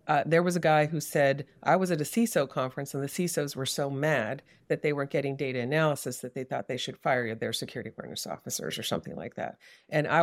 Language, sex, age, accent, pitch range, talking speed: English, female, 40-59, American, 140-170 Hz, 240 wpm